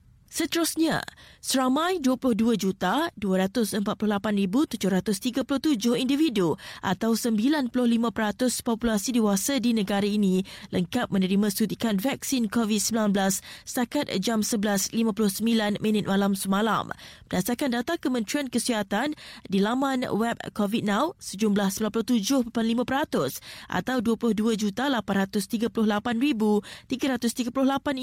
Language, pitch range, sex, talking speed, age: Malay, 210-250 Hz, female, 70 wpm, 20-39